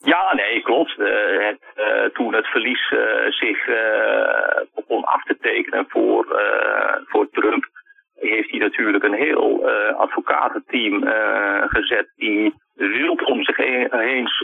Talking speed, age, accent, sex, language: 145 wpm, 50-69, Dutch, male, Dutch